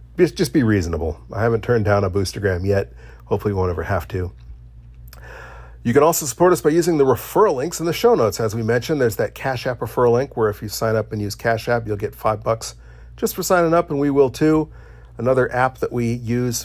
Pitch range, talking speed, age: 95-125 Hz, 235 wpm, 40-59